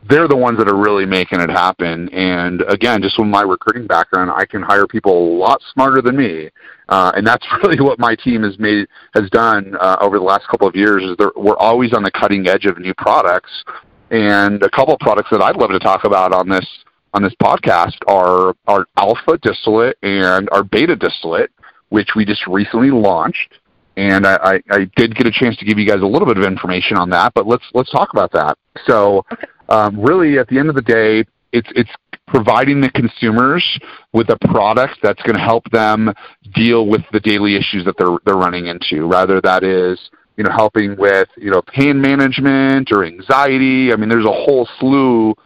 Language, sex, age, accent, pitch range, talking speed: English, male, 40-59, American, 100-125 Hz, 205 wpm